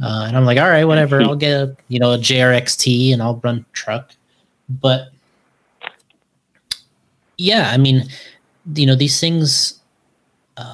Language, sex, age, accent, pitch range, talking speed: English, male, 20-39, American, 115-135 Hz, 145 wpm